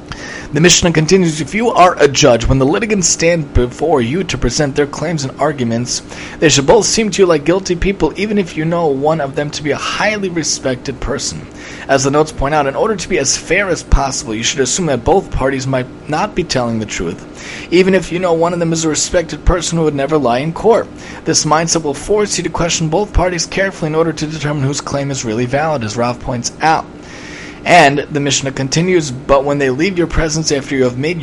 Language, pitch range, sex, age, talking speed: English, 130-165 Hz, male, 30-49, 235 wpm